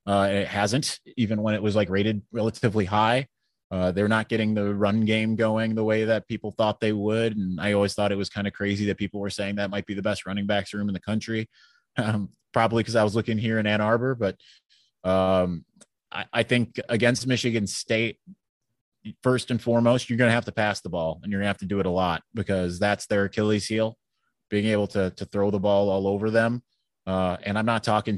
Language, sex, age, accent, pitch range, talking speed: English, male, 20-39, American, 95-115 Hz, 230 wpm